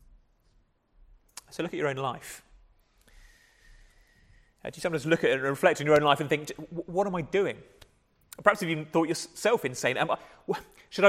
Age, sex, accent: 30-49, male, British